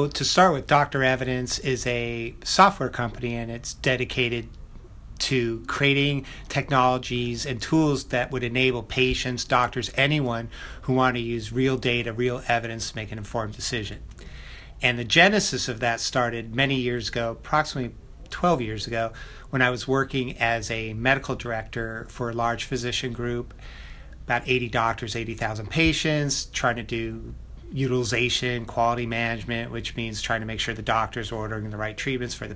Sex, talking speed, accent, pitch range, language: male, 165 wpm, American, 115-130 Hz, English